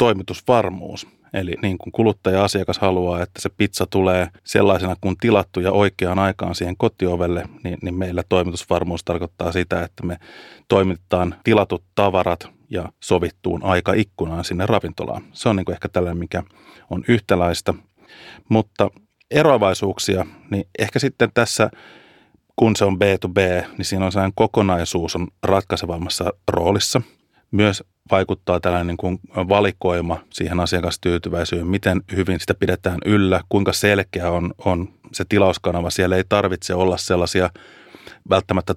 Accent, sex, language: native, male, Finnish